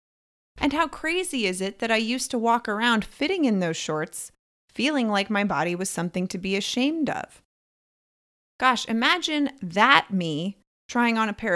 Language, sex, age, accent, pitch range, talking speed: English, female, 20-39, American, 180-220 Hz, 170 wpm